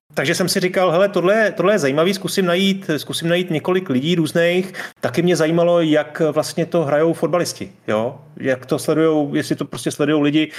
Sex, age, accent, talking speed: male, 30-49, native, 185 wpm